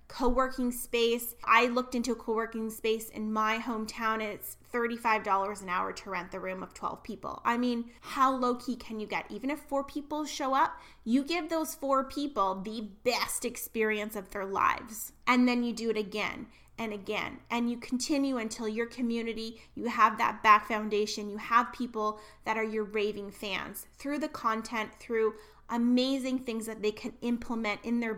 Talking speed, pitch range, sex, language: 185 wpm, 210-245 Hz, female, English